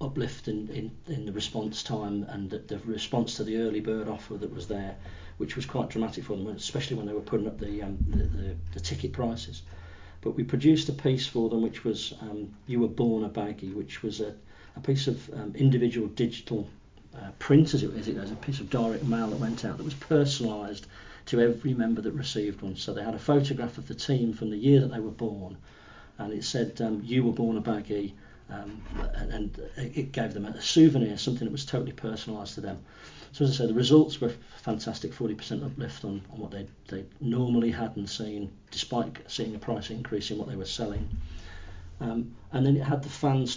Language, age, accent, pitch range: English, 40-59, British, 105-130 Hz